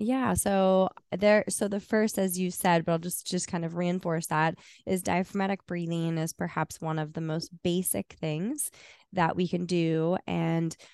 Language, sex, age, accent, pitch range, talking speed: English, female, 20-39, American, 160-185 Hz, 180 wpm